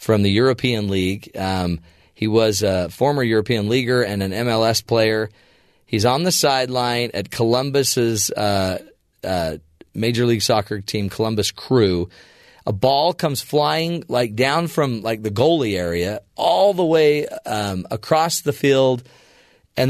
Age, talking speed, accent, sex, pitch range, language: 40-59, 145 wpm, American, male, 100-140 Hz, English